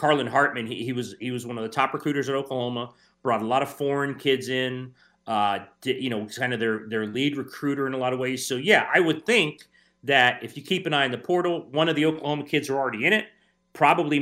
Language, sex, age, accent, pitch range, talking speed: English, male, 30-49, American, 130-165 Hz, 255 wpm